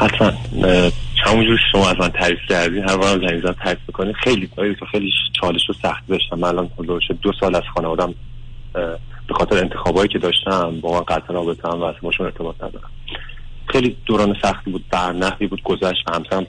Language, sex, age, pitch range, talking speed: Persian, male, 30-49, 90-105 Hz, 185 wpm